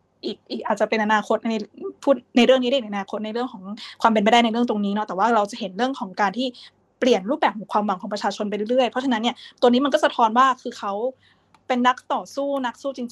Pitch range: 210-255 Hz